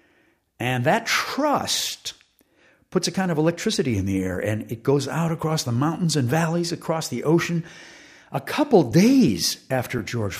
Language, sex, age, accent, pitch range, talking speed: English, male, 60-79, American, 135-180 Hz, 160 wpm